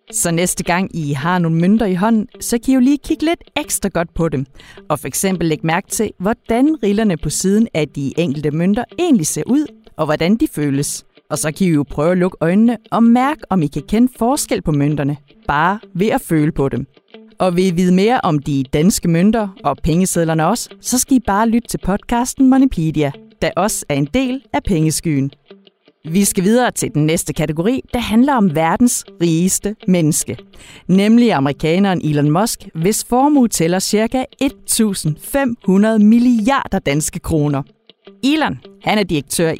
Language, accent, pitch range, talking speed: Danish, native, 155-225 Hz, 180 wpm